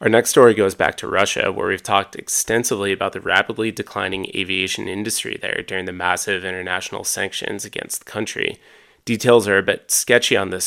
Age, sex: 30-49, male